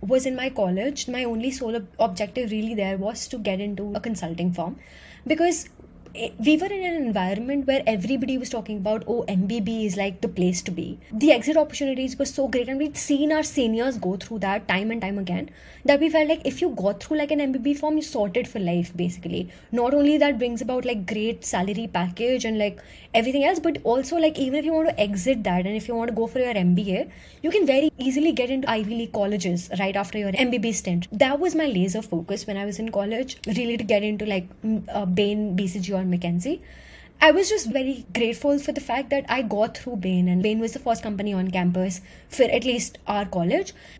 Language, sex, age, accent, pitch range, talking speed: English, female, 20-39, Indian, 200-275 Hz, 220 wpm